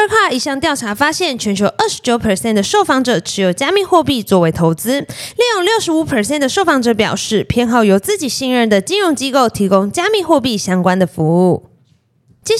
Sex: female